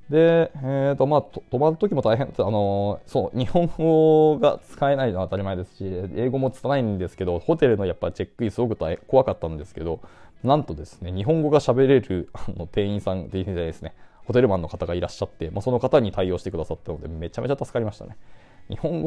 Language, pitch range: Japanese, 90-130 Hz